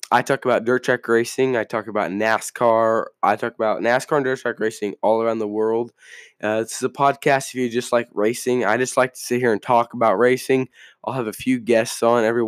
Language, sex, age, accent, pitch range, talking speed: English, male, 10-29, American, 115-135 Hz, 235 wpm